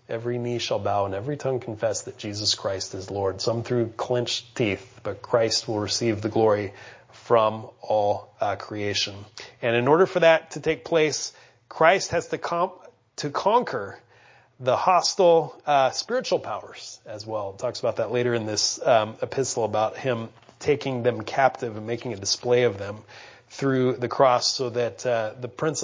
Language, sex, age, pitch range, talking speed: English, male, 30-49, 110-135 Hz, 175 wpm